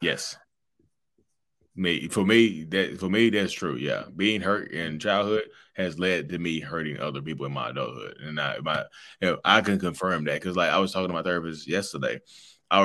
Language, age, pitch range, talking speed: English, 20-39, 85-125 Hz, 200 wpm